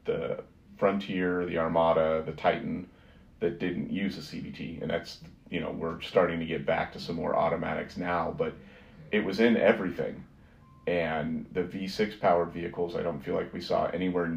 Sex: male